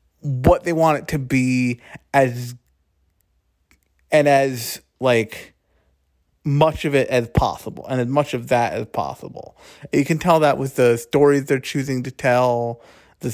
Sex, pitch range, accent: male, 120-160 Hz, American